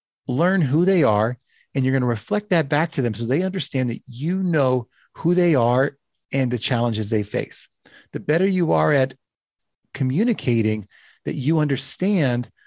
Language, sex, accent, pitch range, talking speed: English, male, American, 115-155 Hz, 170 wpm